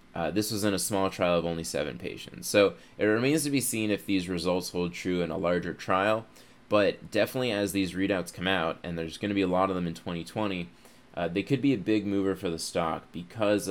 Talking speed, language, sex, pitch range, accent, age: 240 wpm, English, male, 90-105 Hz, American, 20-39